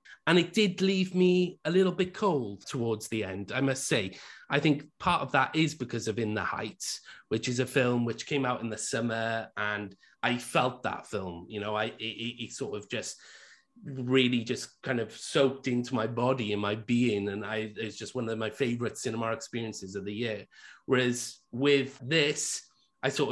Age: 30-49